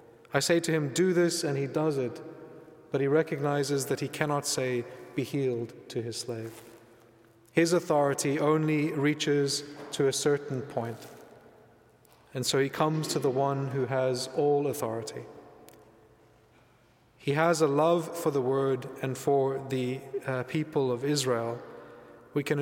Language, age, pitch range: English, 30-49, 130-150 Hz